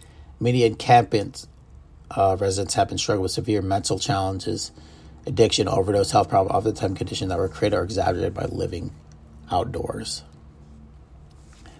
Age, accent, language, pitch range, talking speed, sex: 30-49, American, English, 90-120 Hz, 125 wpm, male